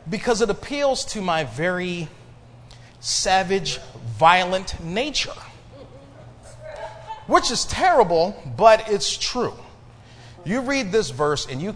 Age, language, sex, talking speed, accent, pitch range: 30-49, English, male, 105 wpm, American, 120-180 Hz